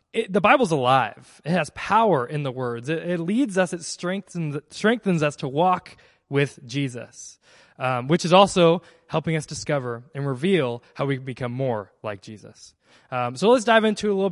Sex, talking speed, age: male, 195 wpm, 20-39